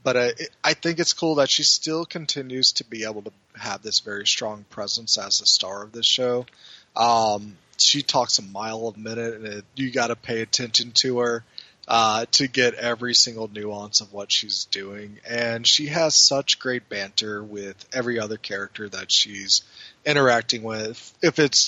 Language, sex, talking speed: English, male, 185 wpm